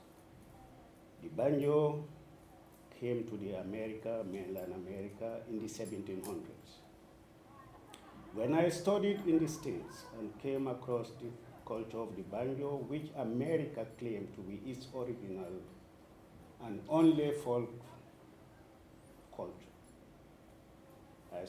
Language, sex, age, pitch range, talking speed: English, male, 50-69, 115-150 Hz, 105 wpm